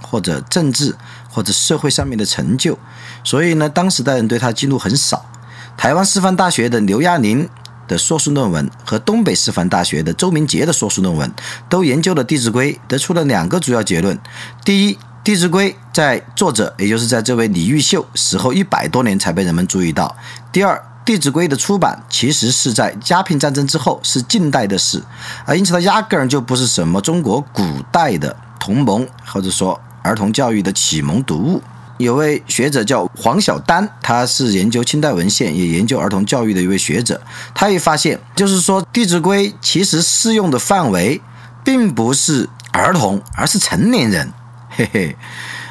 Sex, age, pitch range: male, 50-69, 120-180 Hz